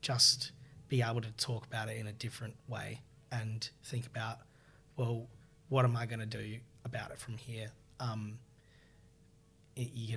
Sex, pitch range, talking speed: male, 115-130 Hz, 160 wpm